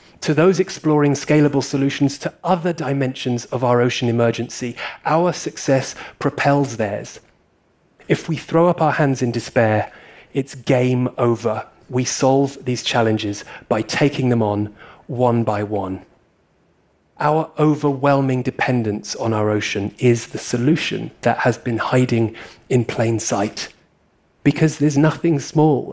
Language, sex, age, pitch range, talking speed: Arabic, male, 30-49, 115-150 Hz, 135 wpm